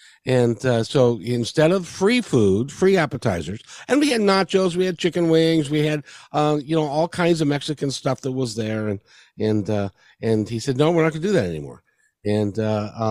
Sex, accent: male, American